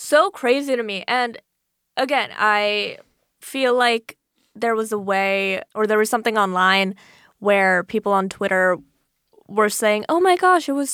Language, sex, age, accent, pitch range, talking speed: English, female, 10-29, American, 195-245 Hz, 160 wpm